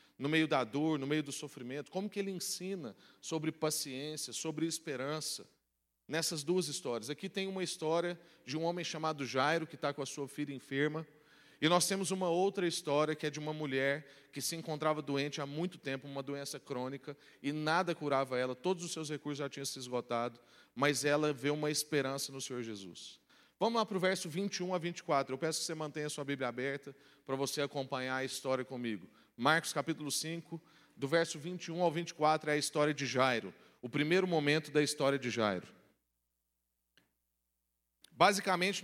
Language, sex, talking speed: Portuguese, male, 185 wpm